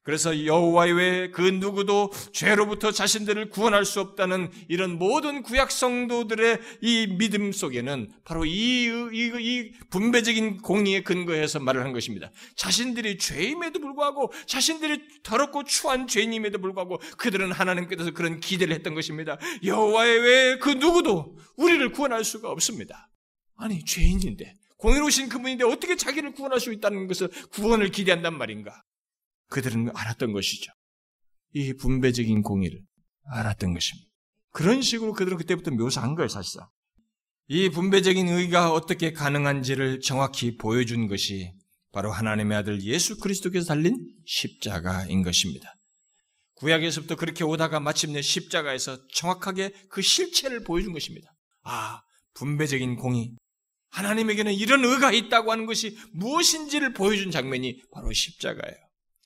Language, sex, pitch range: Korean, male, 150-225 Hz